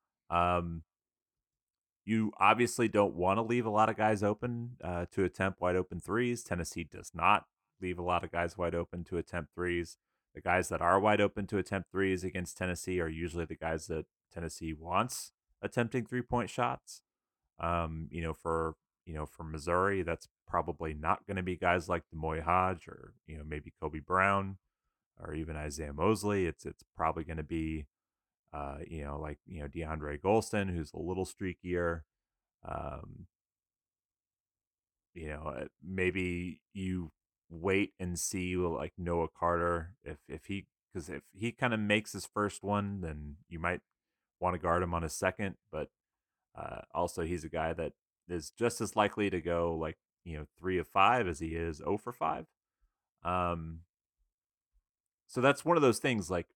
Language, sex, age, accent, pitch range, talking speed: English, male, 30-49, American, 80-100 Hz, 175 wpm